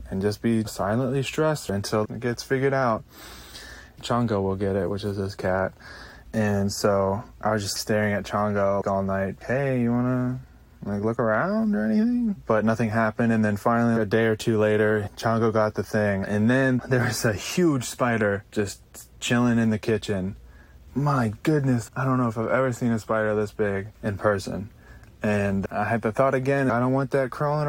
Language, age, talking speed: English, 20-39, 195 wpm